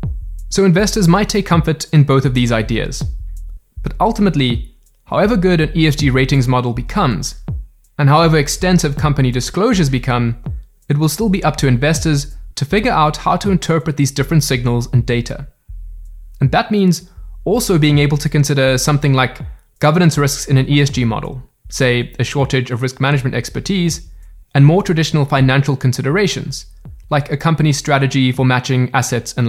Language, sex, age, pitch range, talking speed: English, male, 20-39, 125-160 Hz, 160 wpm